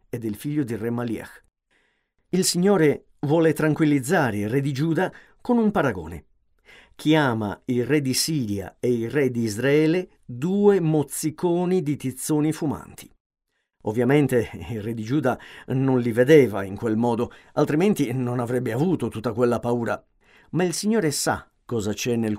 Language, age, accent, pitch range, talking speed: Italian, 50-69, native, 115-160 Hz, 155 wpm